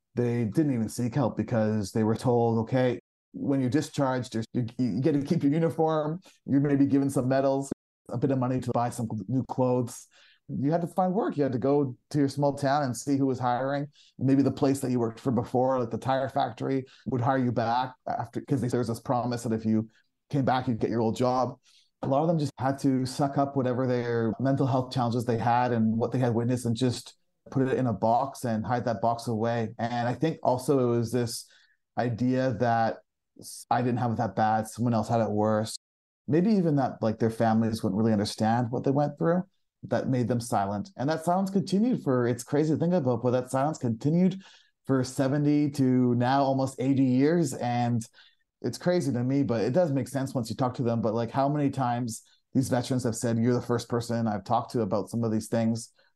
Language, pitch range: English, 115-140 Hz